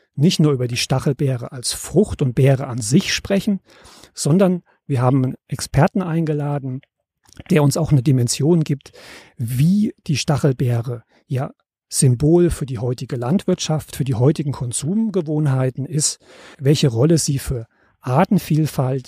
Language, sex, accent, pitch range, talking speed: German, male, German, 135-170 Hz, 135 wpm